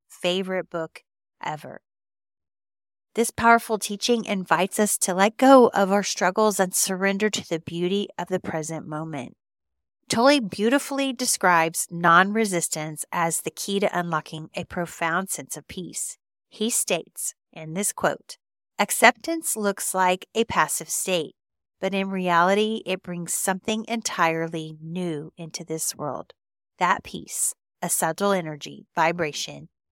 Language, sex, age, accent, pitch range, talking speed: English, female, 40-59, American, 160-210 Hz, 130 wpm